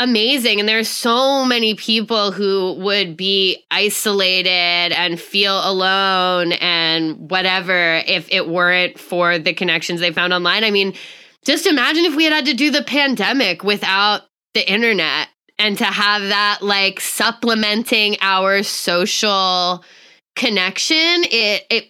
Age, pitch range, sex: 10-29, 190-245 Hz, female